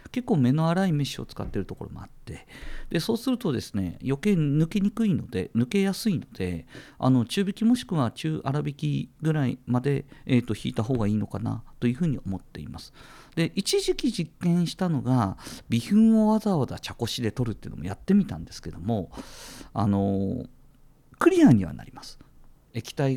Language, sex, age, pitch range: Japanese, male, 50-69, 105-170 Hz